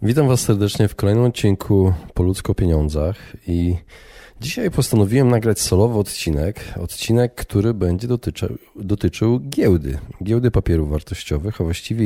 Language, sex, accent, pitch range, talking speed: Polish, male, native, 90-115 Hz, 125 wpm